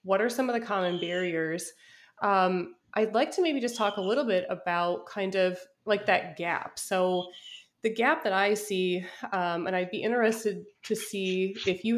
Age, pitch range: 20-39, 185-225 Hz